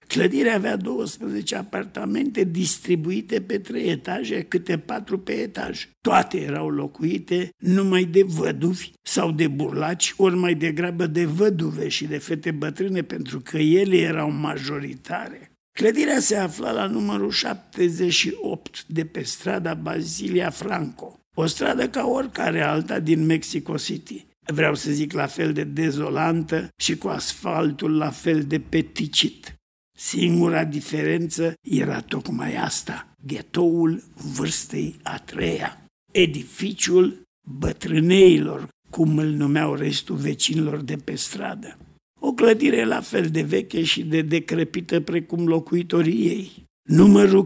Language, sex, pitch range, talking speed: Romanian, male, 155-185 Hz, 125 wpm